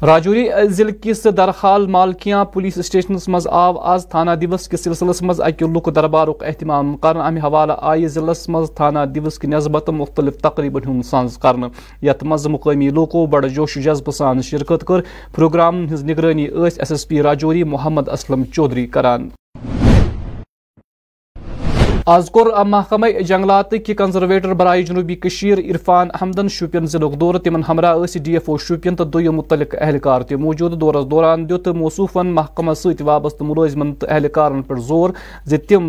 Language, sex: Urdu, male